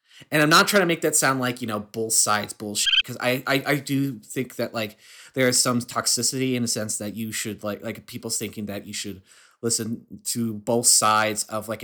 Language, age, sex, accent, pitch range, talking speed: English, 30-49, male, American, 105-140 Hz, 230 wpm